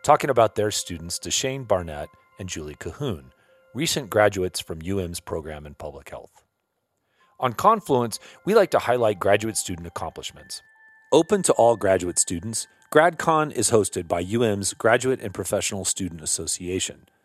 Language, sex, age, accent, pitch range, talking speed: English, male, 40-59, American, 85-120 Hz, 145 wpm